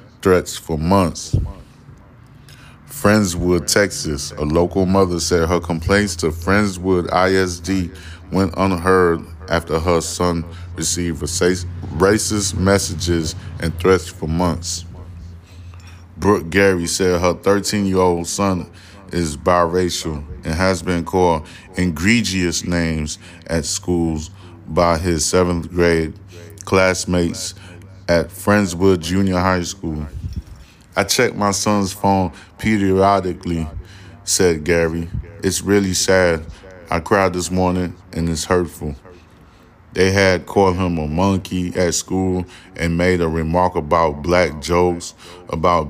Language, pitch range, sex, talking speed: English, 85-95 Hz, male, 110 wpm